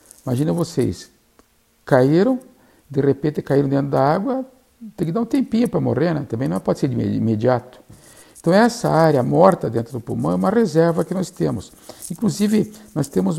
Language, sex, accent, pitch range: Portuguese, male, Brazilian, 125-185 Hz